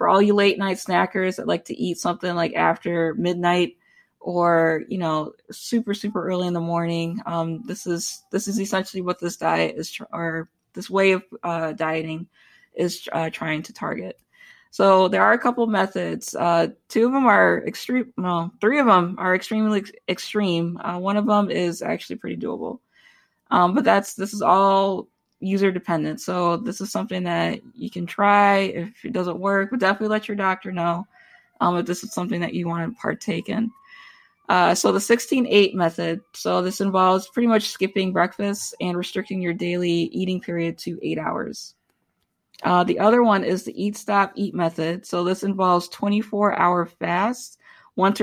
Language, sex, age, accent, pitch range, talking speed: English, female, 20-39, American, 175-205 Hz, 180 wpm